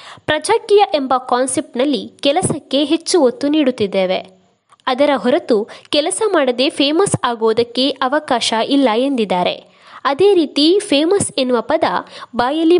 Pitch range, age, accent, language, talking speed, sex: 250-330 Hz, 20-39, native, Kannada, 105 wpm, female